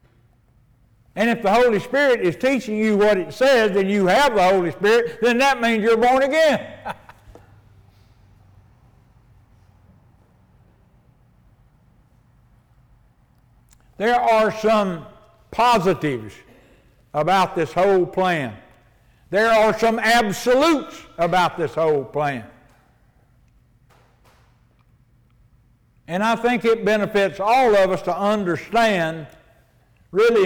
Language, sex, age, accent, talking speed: English, male, 60-79, American, 100 wpm